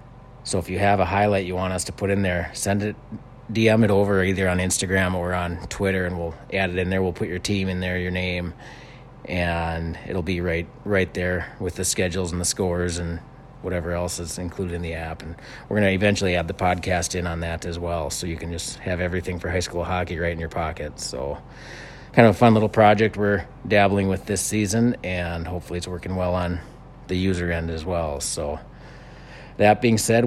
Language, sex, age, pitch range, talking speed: English, male, 30-49, 90-100 Hz, 220 wpm